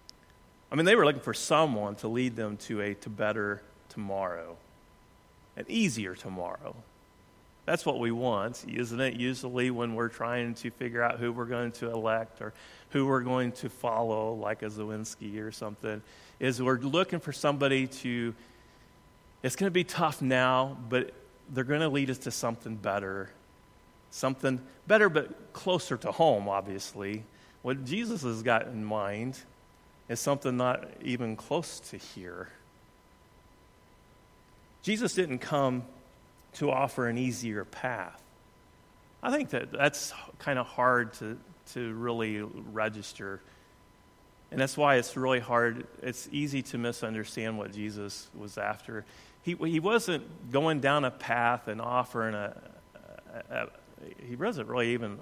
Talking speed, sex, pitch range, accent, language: 150 wpm, male, 105-130 Hz, American, English